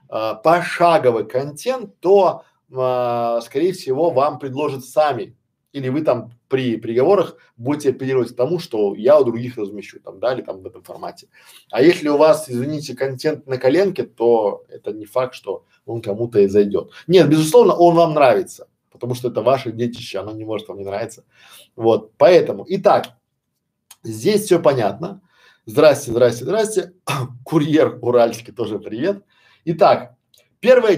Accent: native